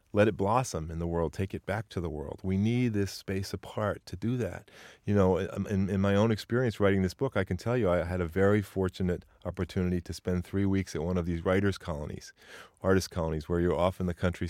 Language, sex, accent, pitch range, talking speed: English, male, American, 85-100 Hz, 240 wpm